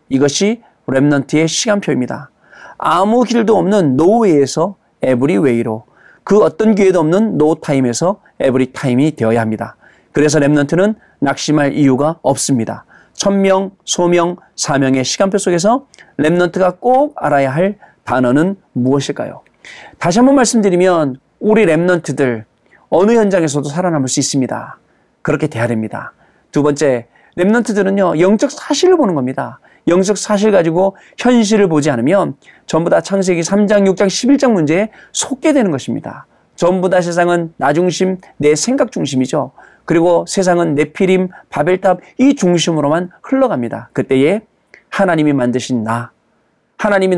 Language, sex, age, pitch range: Korean, male, 40-59, 140-200 Hz